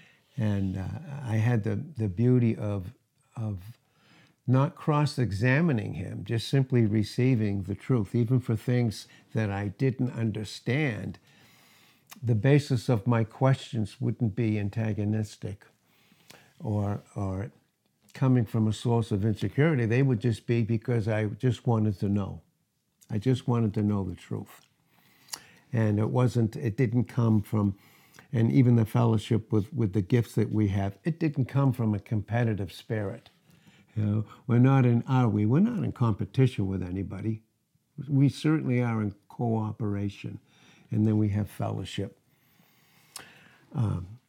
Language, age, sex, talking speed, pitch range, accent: English, 60-79, male, 145 wpm, 105-135 Hz, American